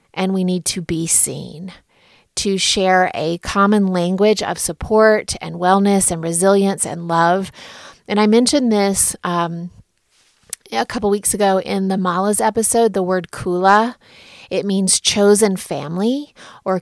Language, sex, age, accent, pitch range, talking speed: English, female, 30-49, American, 175-210 Hz, 145 wpm